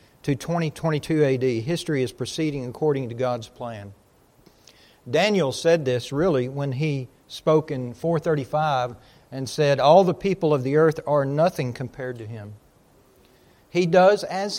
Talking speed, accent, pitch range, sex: 145 wpm, American, 125-155 Hz, male